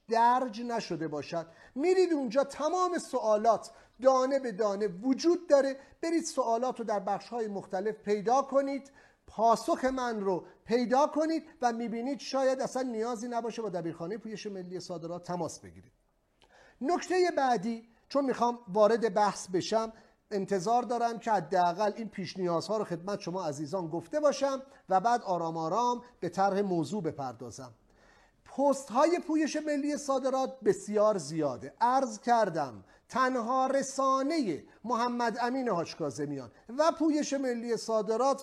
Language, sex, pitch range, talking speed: English, male, 195-265 Hz, 135 wpm